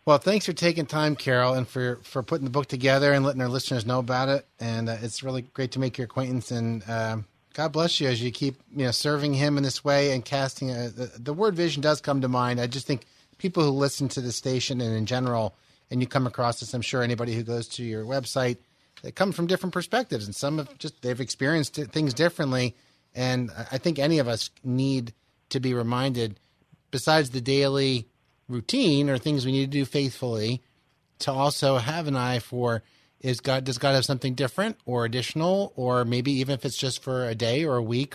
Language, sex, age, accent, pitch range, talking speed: English, male, 30-49, American, 120-140 Hz, 220 wpm